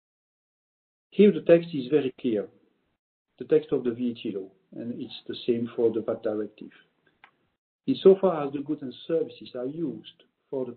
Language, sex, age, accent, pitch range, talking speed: English, male, 60-79, French, 120-160 Hz, 165 wpm